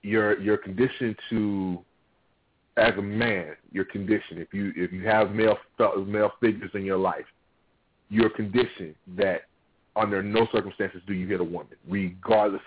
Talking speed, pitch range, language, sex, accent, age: 150 wpm, 95-115 Hz, English, male, American, 40-59